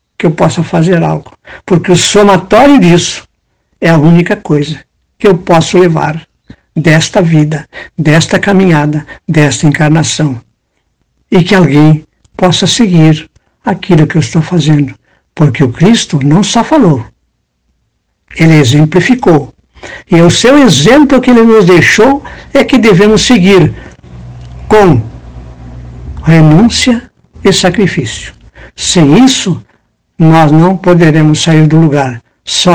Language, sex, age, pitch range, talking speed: Portuguese, male, 60-79, 145-205 Hz, 120 wpm